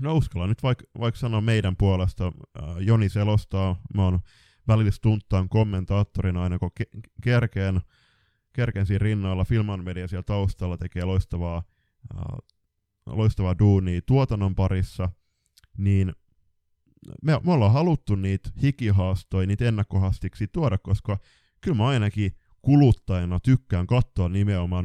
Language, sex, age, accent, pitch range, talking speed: Finnish, male, 20-39, native, 90-115 Hz, 115 wpm